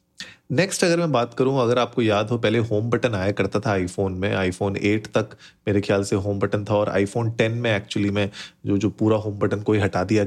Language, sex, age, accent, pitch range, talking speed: Hindi, male, 30-49, native, 105-130 Hz, 235 wpm